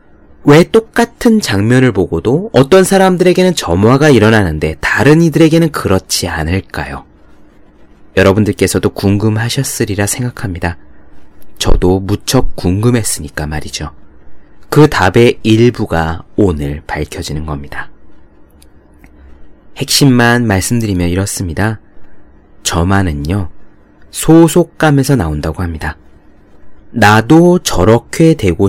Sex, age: male, 30-49